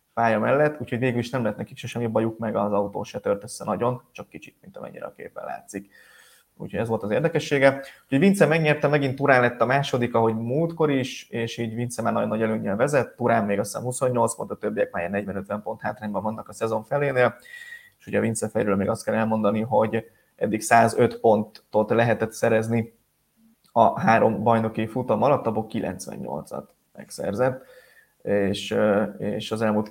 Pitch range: 110-125 Hz